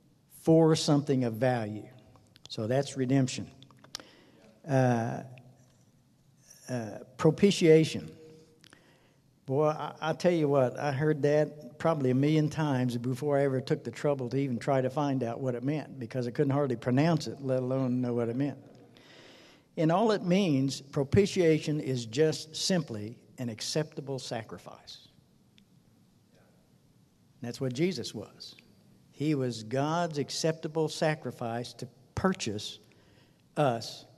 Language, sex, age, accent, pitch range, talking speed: English, male, 60-79, American, 125-150 Hz, 125 wpm